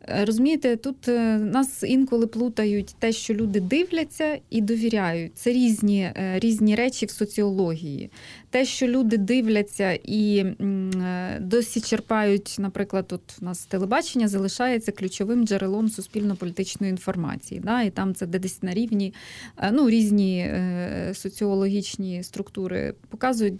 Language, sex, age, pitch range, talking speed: Ukrainian, female, 20-39, 195-235 Hz, 110 wpm